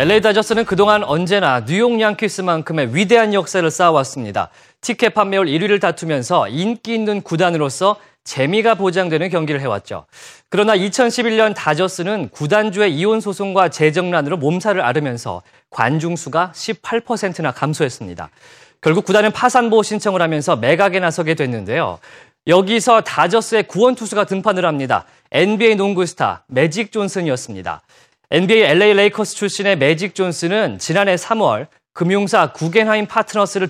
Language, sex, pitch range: Korean, male, 160-215 Hz